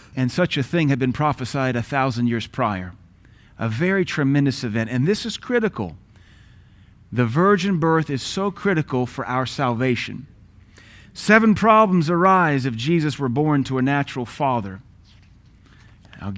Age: 40-59